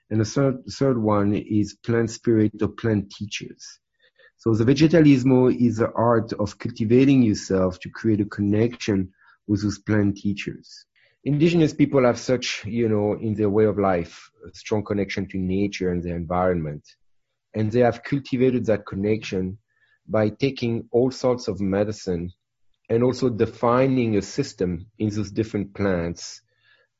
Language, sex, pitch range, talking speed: English, male, 100-125 Hz, 150 wpm